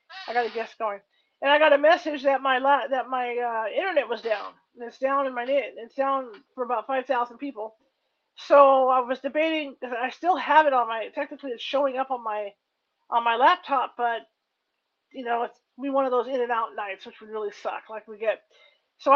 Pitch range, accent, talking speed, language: 235-280 Hz, American, 220 wpm, English